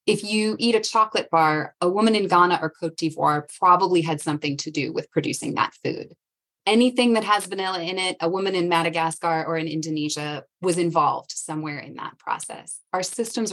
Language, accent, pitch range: English, American, 165-220 Hz